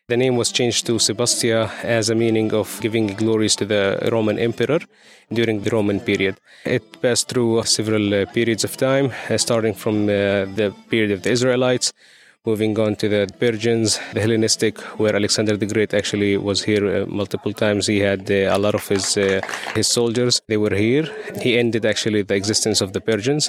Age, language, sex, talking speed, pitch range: 20-39, English, male, 190 wpm, 105-120 Hz